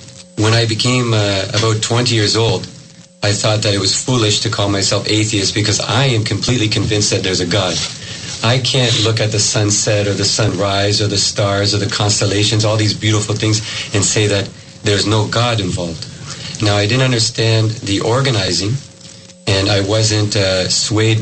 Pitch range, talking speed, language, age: 100-115 Hz, 180 wpm, Urdu, 30-49